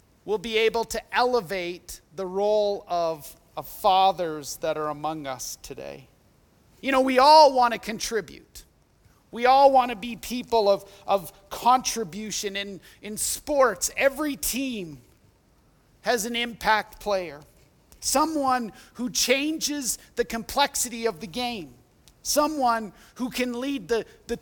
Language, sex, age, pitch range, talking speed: English, male, 40-59, 190-240 Hz, 135 wpm